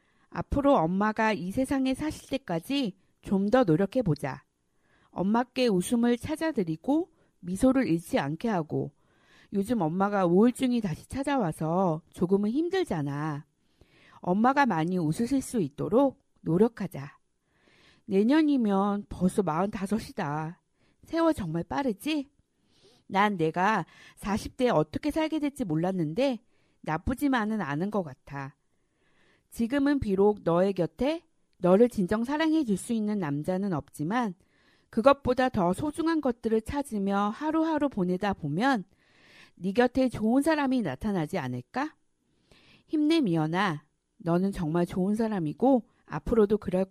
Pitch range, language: 175-265 Hz, Korean